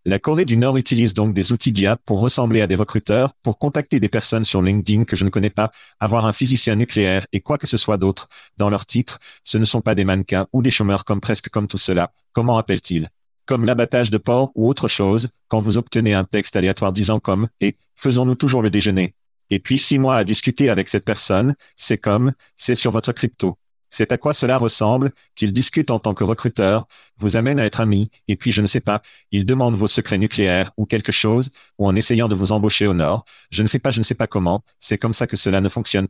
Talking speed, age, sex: 245 wpm, 50-69, male